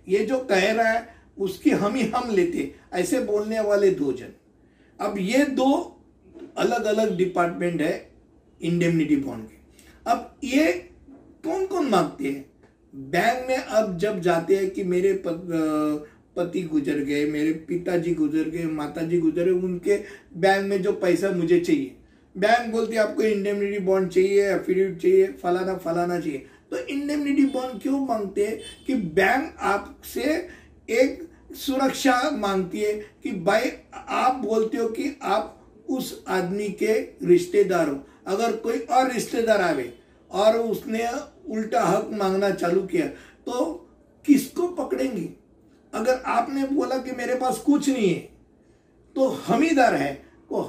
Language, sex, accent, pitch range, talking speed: Hindi, male, native, 185-275 Hz, 145 wpm